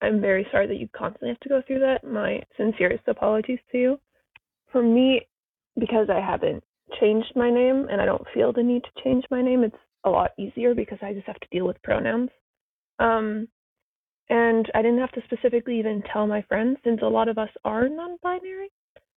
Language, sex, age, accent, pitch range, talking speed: English, female, 20-39, American, 215-260 Hz, 200 wpm